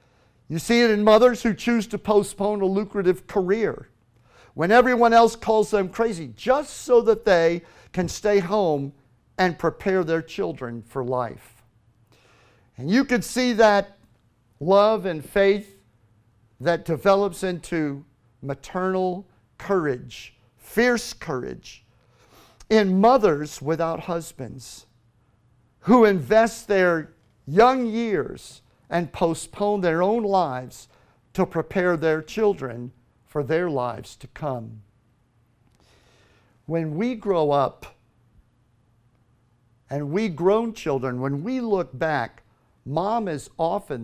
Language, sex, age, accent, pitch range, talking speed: English, male, 50-69, American, 120-200 Hz, 115 wpm